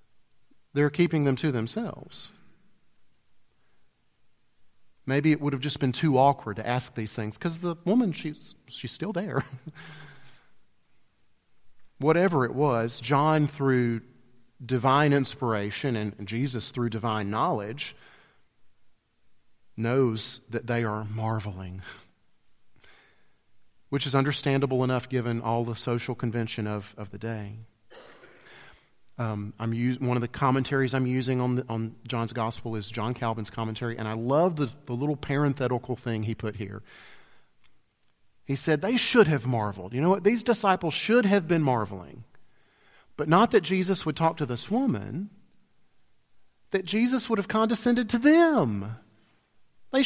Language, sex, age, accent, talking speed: English, male, 40-59, American, 140 wpm